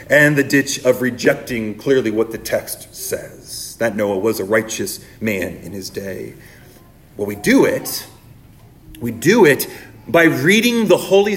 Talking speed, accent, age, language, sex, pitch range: 160 wpm, American, 30-49, English, male, 130-195 Hz